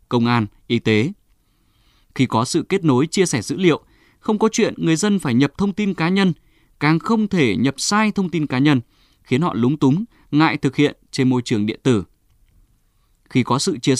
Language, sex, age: Vietnamese, male, 20-39